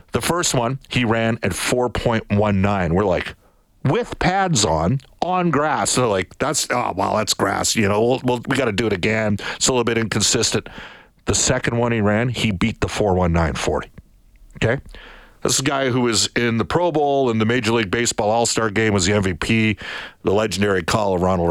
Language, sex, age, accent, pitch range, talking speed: English, male, 50-69, American, 100-125 Hz, 220 wpm